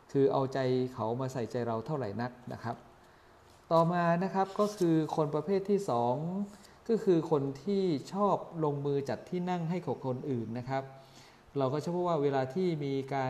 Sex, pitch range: male, 125-165 Hz